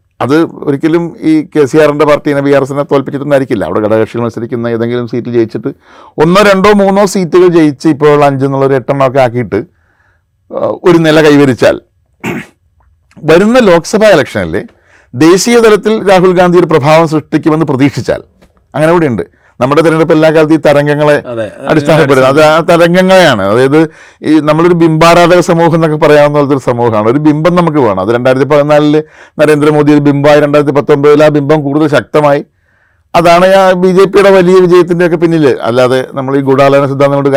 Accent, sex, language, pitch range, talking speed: native, male, Malayalam, 135-160 Hz, 145 wpm